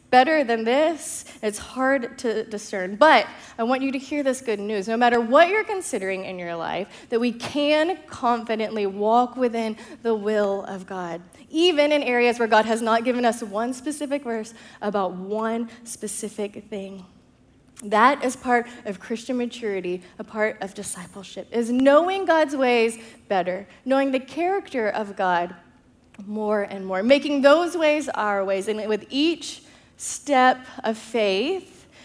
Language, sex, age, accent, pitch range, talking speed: English, female, 20-39, American, 200-255 Hz, 155 wpm